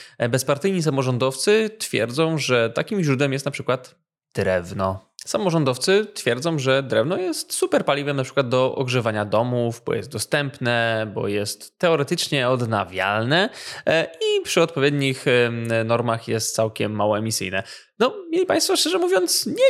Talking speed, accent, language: 130 wpm, native, Polish